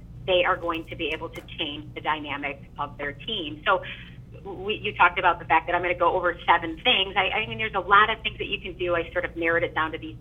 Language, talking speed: English, 280 wpm